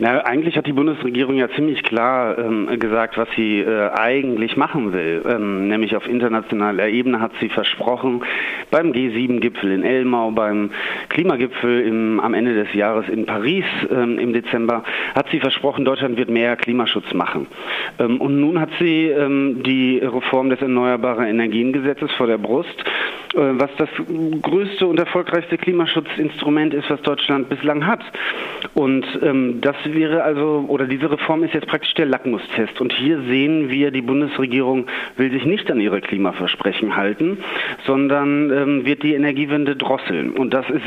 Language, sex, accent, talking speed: German, male, German, 155 wpm